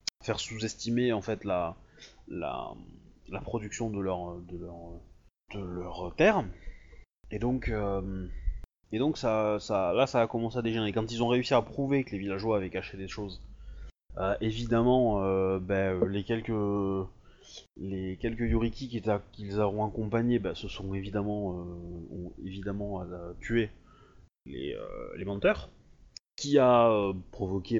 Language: French